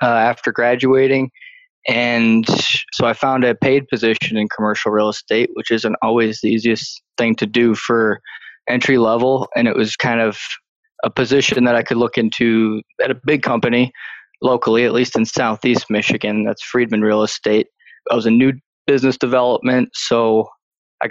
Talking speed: 170 wpm